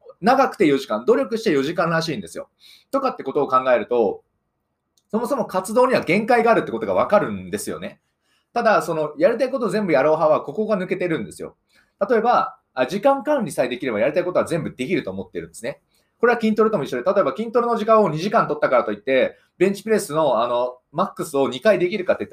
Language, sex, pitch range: Japanese, male, 155-230 Hz